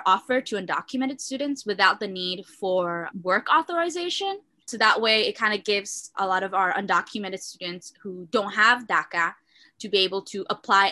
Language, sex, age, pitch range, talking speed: English, female, 10-29, 200-260 Hz, 175 wpm